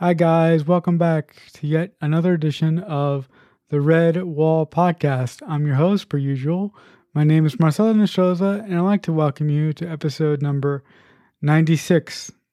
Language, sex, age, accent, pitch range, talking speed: English, male, 20-39, American, 150-170 Hz, 160 wpm